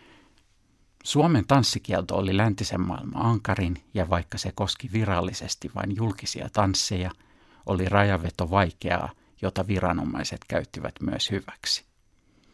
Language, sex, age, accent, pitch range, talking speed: Finnish, male, 50-69, native, 95-115 Hz, 105 wpm